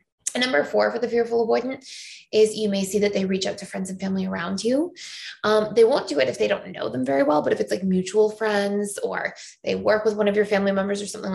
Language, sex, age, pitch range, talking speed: English, female, 20-39, 195-235 Hz, 265 wpm